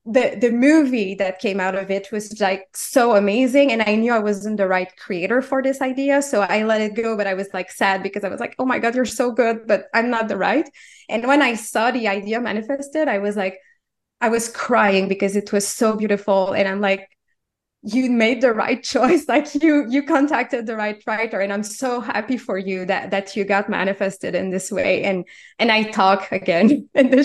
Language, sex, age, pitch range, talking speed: English, female, 20-39, 200-240 Hz, 225 wpm